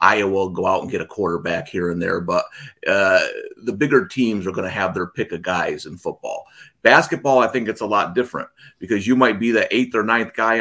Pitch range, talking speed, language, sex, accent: 100-125 Hz, 240 wpm, English, male, American